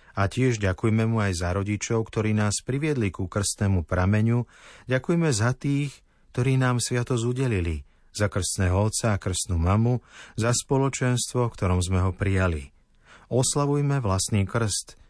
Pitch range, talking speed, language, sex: 95-120 Hz, 140 wpm, Slovak, male